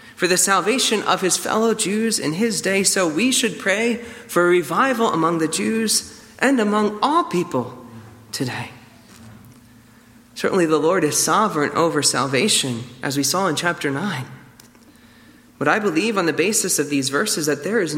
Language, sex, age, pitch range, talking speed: English, male, 30-49, 130-200 Hz, 165 wpm